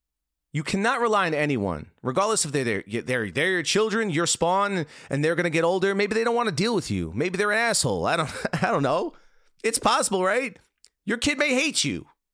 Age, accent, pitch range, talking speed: 30-49, American, 140-215 Hz, 215 wpm